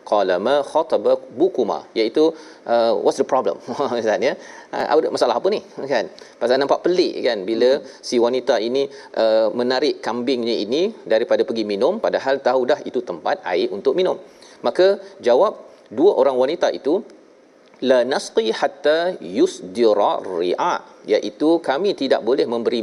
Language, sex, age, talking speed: Malayalam, male, 40-59, 140 wpm